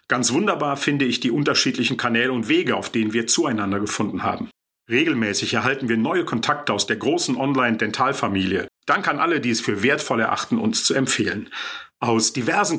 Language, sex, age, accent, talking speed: German, male, 50-69, German, 175 wpm